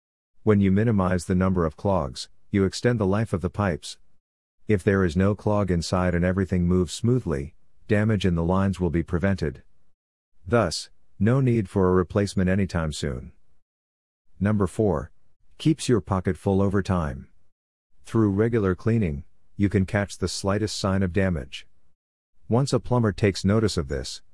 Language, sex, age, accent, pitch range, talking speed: English, male, 50-69, American, 85-100 Hz, 160 wpm